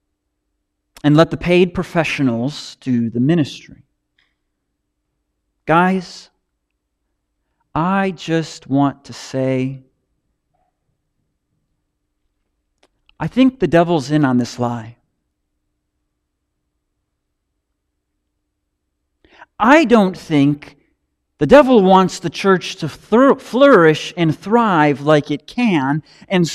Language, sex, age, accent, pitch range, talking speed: English, male, 40-59, American, 125-190 Hz, 85 wpm